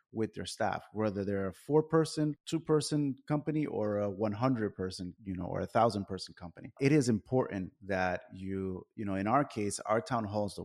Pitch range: 95-125 Hz